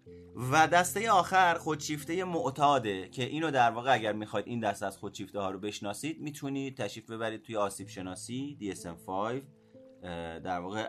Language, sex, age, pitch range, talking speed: Persian, male, 30-49, 90-125 Hz, 160 wpm